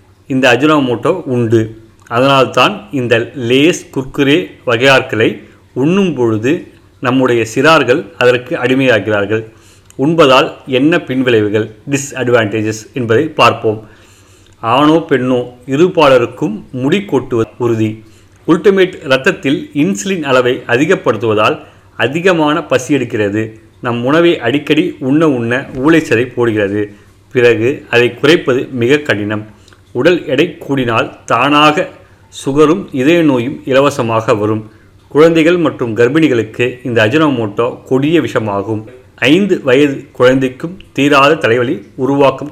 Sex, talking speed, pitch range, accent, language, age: male, 95 wpm, 110-140 Hz, native, Tamil, 30-49